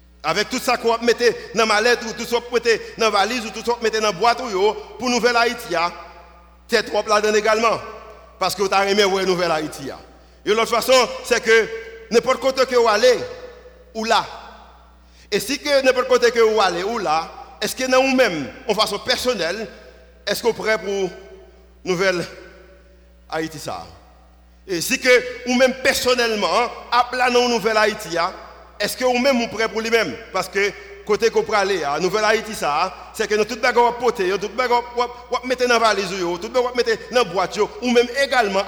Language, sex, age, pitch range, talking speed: French, male, 50-69, 195-245 Hz, 195 wpm